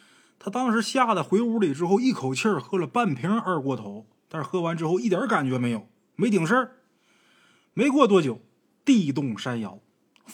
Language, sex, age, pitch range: Chinese, male, 20-39, 120-200 Hz